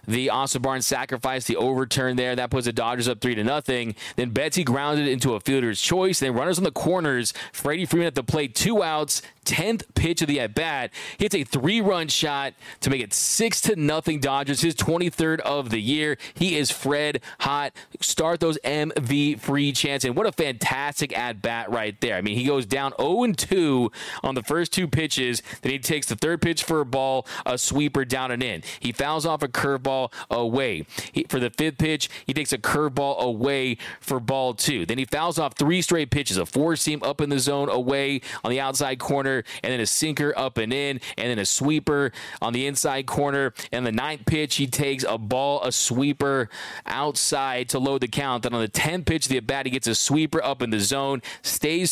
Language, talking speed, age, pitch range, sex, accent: English, 210 wpm, 20-39, 125-150 Hz, male, American